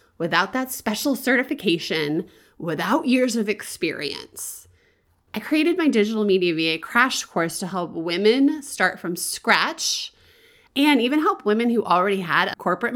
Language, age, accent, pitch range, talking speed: English, 30-49, American, 175-235 Hz, 145 wpm